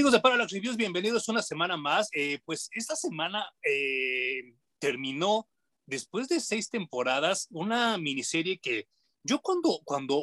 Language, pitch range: Spanish, 145-215 Hz